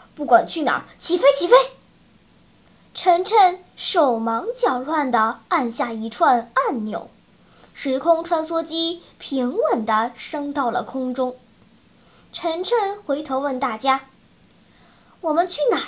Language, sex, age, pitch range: Chinese, male, 10-29, 250-355 Hz